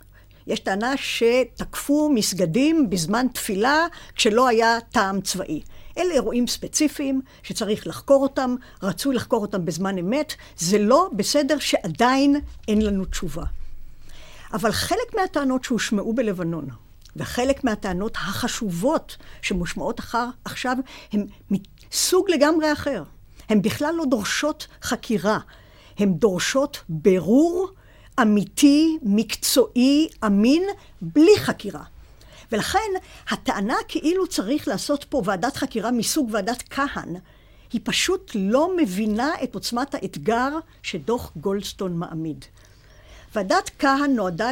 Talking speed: 110 wpm